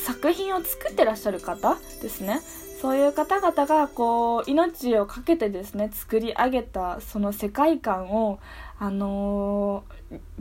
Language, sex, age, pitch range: Japanese, female, 20-39, 215-285 Hz